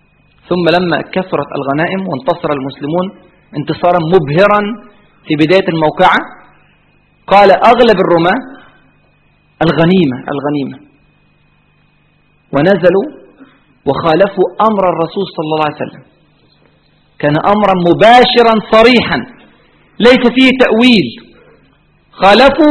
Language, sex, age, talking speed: Arabic, male, 40-59, 85 wpm